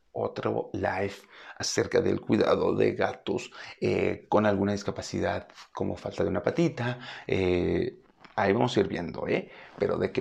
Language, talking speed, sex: Spanish, 155 wpm, male